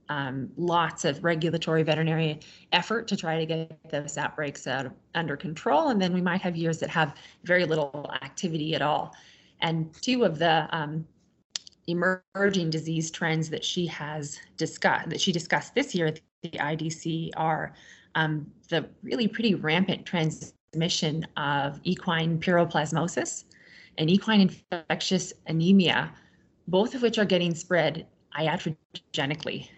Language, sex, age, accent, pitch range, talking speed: English, female, 20-39, American, 155-180 Hz, 140 wpm